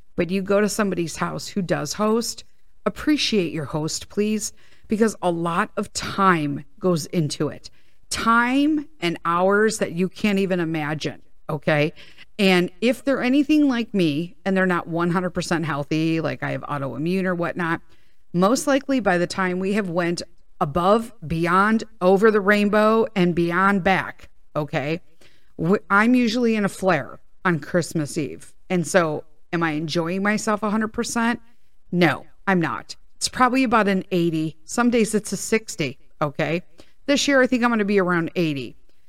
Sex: female